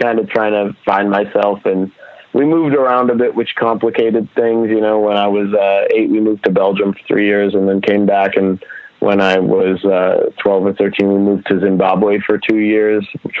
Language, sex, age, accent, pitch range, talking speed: English, male, 30-49, American, 95-115 Hz, 220 wpm